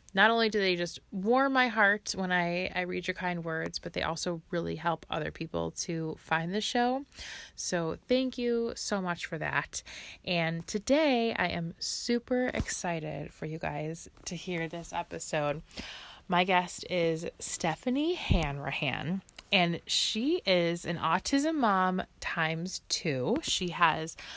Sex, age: female, 20-39